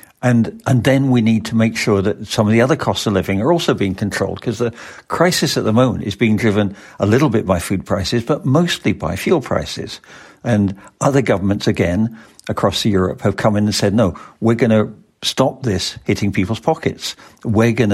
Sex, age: male, 60-79